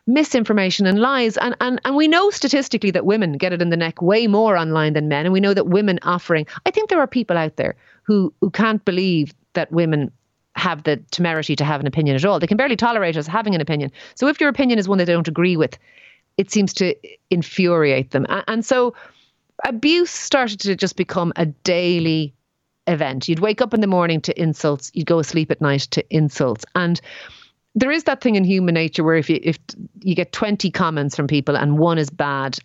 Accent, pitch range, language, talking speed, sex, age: Irish, 145-215 Hz, English, 220 wpm, female, 30-49